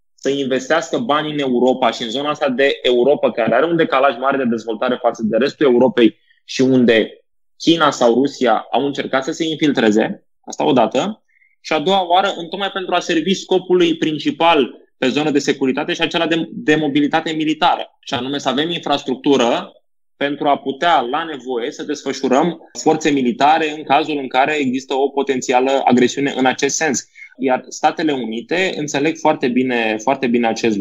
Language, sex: Romanian, male